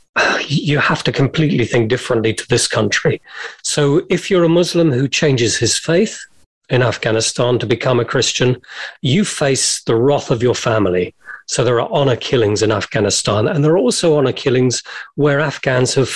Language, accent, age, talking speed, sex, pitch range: English, British, 40-59, 175 wpm, male, 120-155 Hz